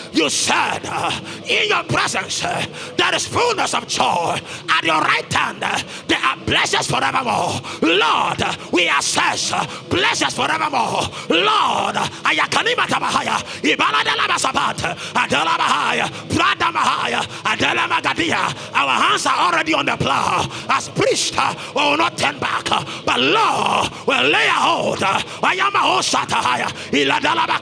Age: 30-49